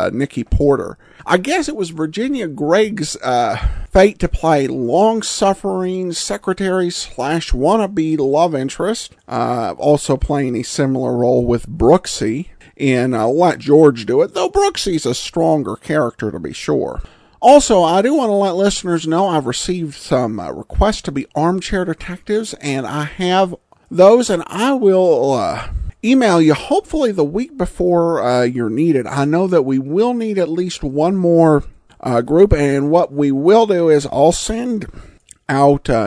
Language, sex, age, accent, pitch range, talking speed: English, male, 50-69, American, 140-195 Hz, 160 wpm